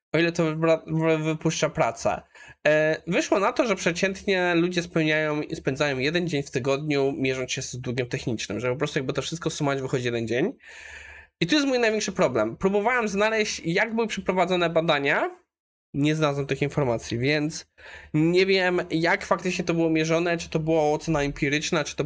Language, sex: Polish, male